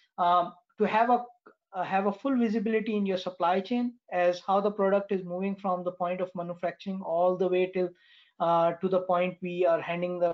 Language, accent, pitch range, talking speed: English, Indian, 180-215 Hz, 210 wpm